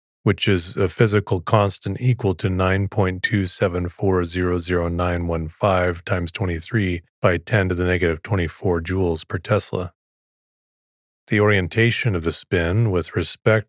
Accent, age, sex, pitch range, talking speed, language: American, 30-49, male, 85-105 Hz, 115 wpm, English